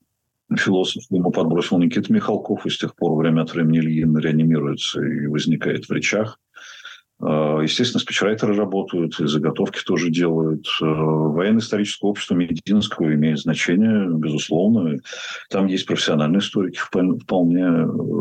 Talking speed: 120 wpm